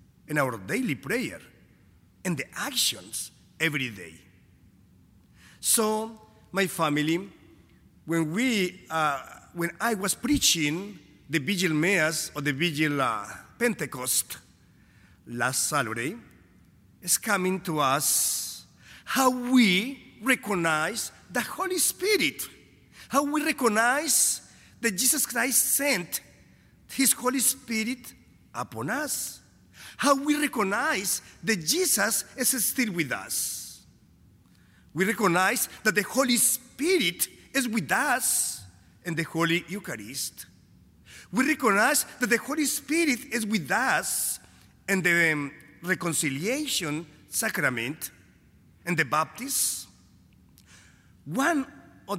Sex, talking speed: male, 105 wpm